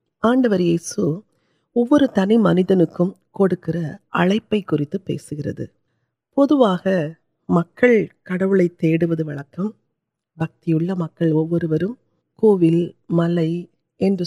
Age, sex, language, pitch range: 40-59, female, Urdu, 165-215 Hz